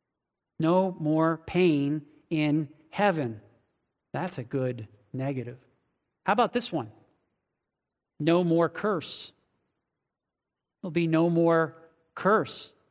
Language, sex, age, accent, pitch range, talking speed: English, male, 40-59, American, 140-195 Hz, 100 wpm